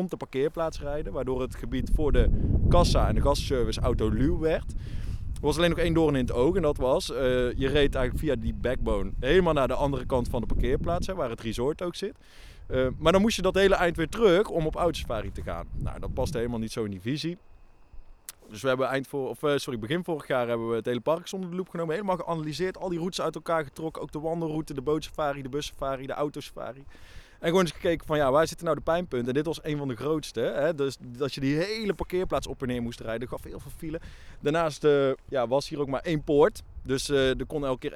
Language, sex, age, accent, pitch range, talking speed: Dutch, male, 20-39, Dutch, 120-165 Hz, 250 wpm